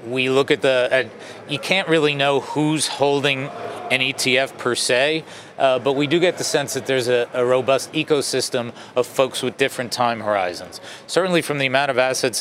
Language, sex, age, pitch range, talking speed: English, male, 40-59, 125-150 Hz, 190 wpm